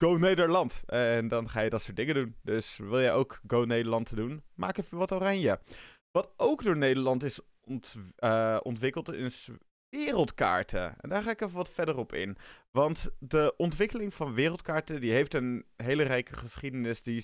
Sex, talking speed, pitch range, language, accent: male, 180 wpm, 110-145 Hz, Dutch, Dutch